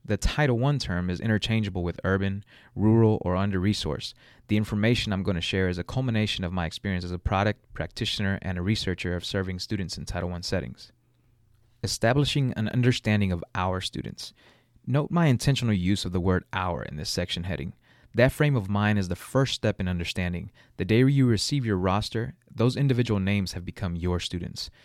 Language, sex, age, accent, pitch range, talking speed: English, male, 30-49, American, 95-120 Hz, 190 wpm